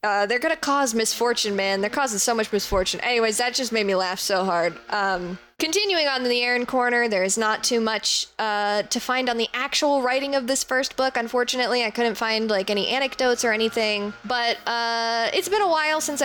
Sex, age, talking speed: female, 10-29, 210 wpm